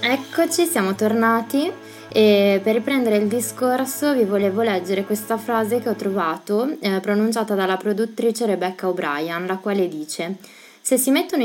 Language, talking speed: Italian, 145 wpm